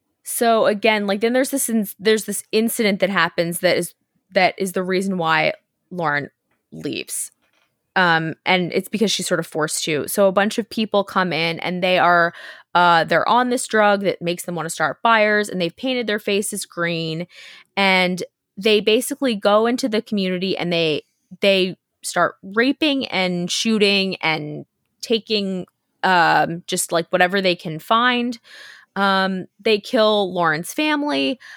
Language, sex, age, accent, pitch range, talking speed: English, female, 20-39, American, 175-215 Hz, 165 wpm